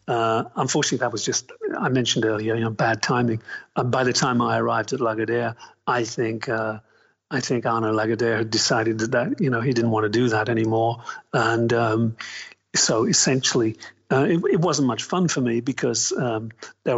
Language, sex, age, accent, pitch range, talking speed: English, male, 50-69, British, 115-135 Hz, 190 wpm